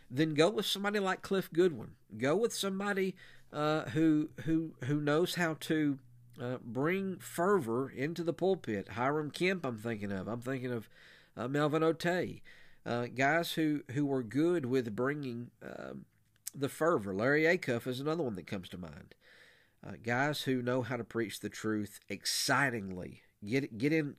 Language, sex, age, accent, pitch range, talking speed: English, male, 50-69, American, 110-150 Hz, 165 wpm